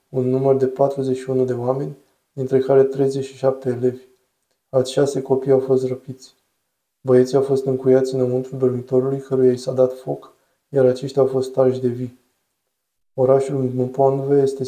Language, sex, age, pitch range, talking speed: Romanian, male, 20-39, 130-135 Hz, 150 wpm